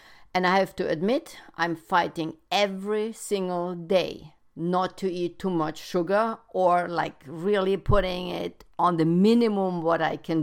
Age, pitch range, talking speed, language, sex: 50-69, 170-215 Hz, 155 wpm, English, female